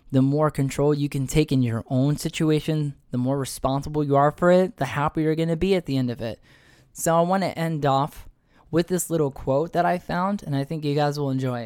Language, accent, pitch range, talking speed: English, American, 135-180 Hz, 235 wpm